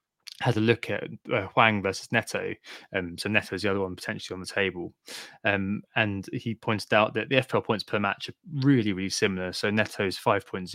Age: 20-39